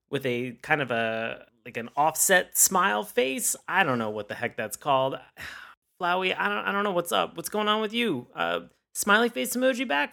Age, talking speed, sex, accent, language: 30-49, 215 wpm, male, American, English